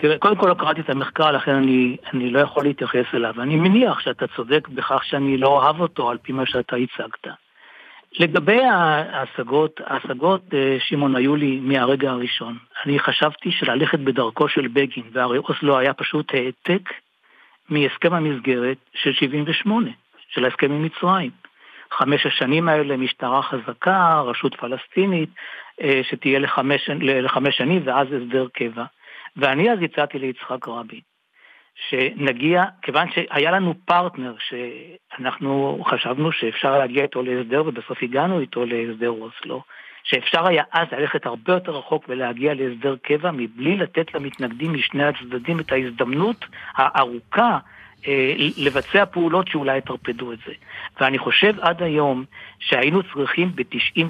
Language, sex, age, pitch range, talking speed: Hebrew, male, 60-79, 130-160 Hz, 135 wpm